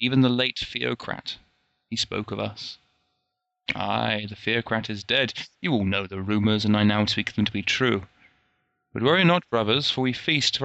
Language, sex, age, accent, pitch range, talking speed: English, male, 20-39, British, 105-130 Hz, 190 wpm